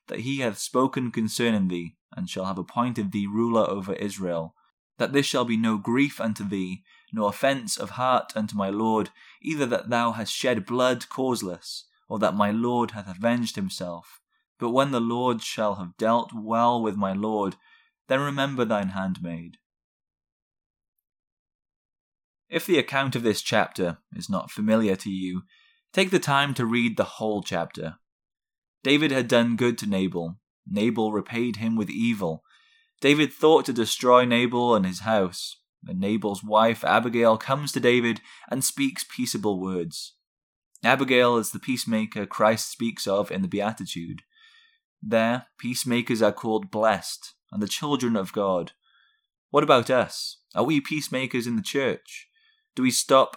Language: English